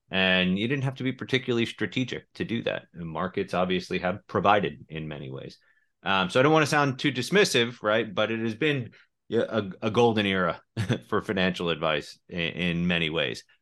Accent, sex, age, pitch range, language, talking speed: American, male, 30-49, 85-115 Hz, English, 195 wpm